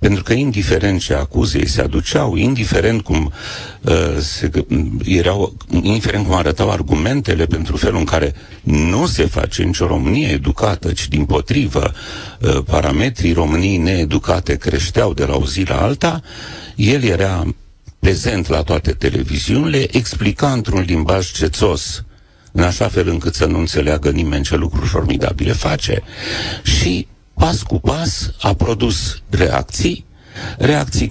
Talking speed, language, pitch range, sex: 135 wpm, Romanian, 85-105 Hz, male